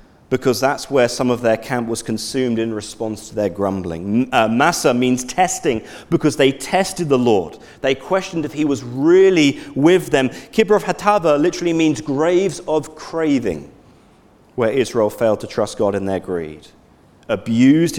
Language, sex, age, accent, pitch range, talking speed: English, male, 40-59, British, 125-190 Hz, 155 wpm